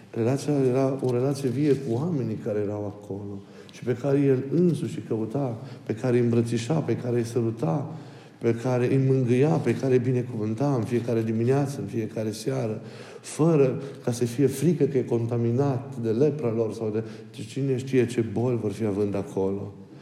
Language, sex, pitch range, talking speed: Romanian, male, 110-135 Hz, 180 wpm